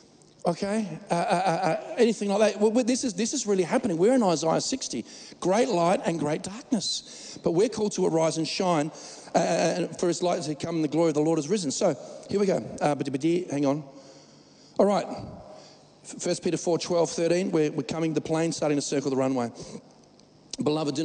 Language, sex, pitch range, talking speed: English, male, 150-200 Hz, 210 wpm